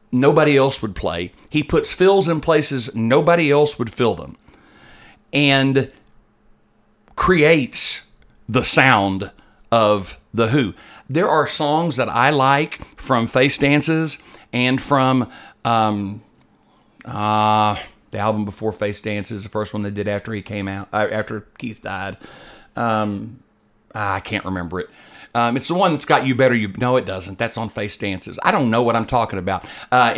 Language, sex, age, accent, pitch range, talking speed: English, male, 50-69, American, 105-150 Hz, 160 wpm